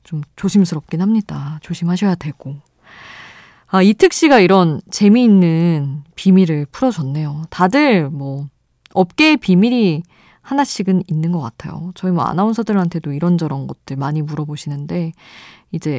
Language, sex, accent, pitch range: Korean, female, native, 155-200 Hz